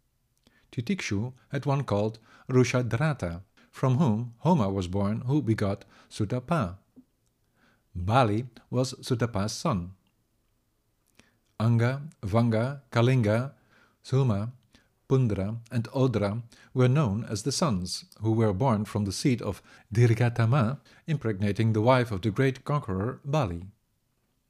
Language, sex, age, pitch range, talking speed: English, male, 50-69, 105-130 Hz, 110 wpm